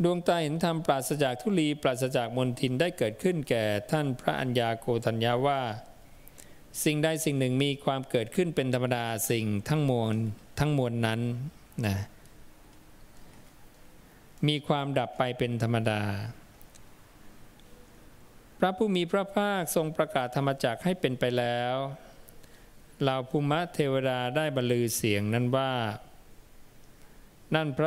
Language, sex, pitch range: English, male, 115-150 Hz